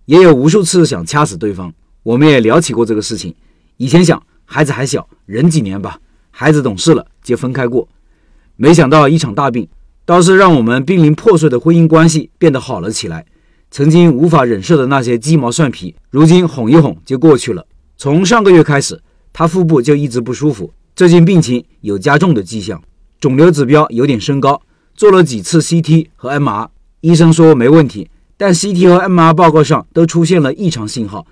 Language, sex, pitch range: Chinese, male, 120-165 Hz